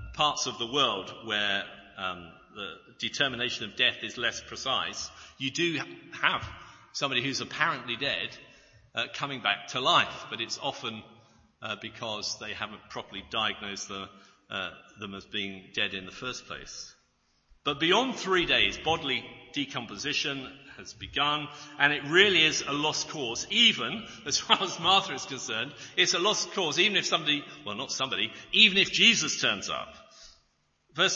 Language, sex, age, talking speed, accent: English, male, 50-69, 160 wpm, British